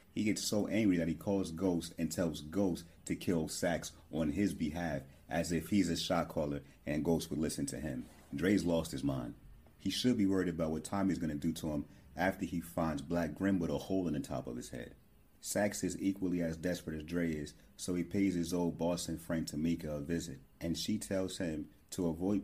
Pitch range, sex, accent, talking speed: 80-95 Hz, male, American, 220 wpm